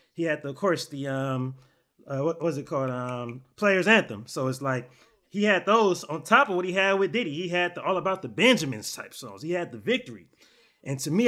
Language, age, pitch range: English, 20-39, 155-210 Hz